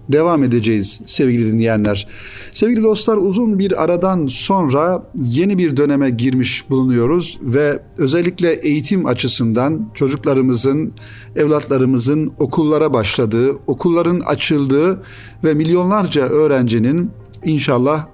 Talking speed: 95 wpm